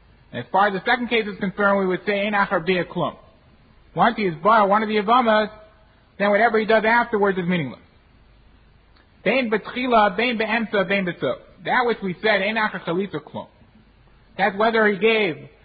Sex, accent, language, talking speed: male, American, English, 165 wpm